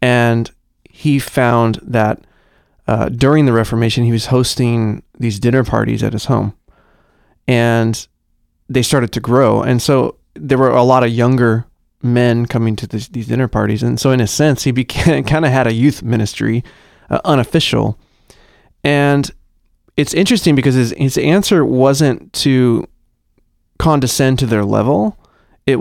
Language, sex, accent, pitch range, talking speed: English, male, American, 115-135 Hz, 150 wpm